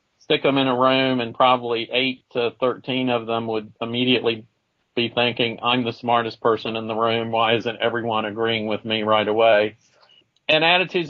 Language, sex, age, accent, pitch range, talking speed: English, male, 40-59, American, 115-130 Hz, 180 wpm